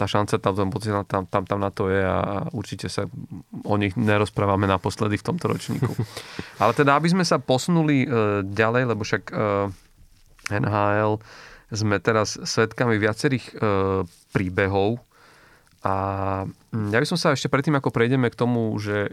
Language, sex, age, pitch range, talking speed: Slovak, male, 30-49, 100-120 Hz, 145 wpm